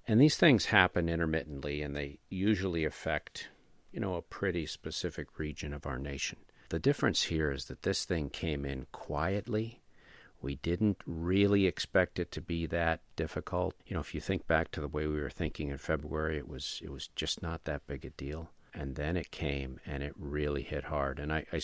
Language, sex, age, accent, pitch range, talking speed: English, male, 50-69, American, 75-90 Hz, 200 wpm